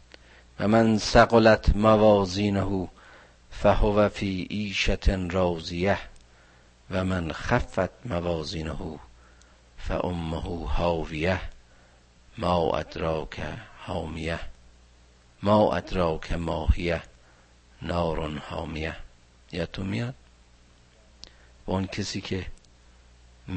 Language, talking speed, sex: Persian, 70 wpm, male